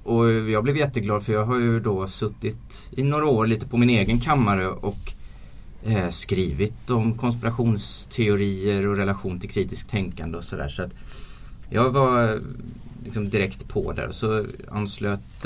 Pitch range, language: 95-120 Hz, Swedish